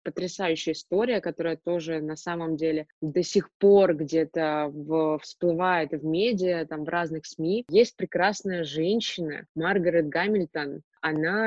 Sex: female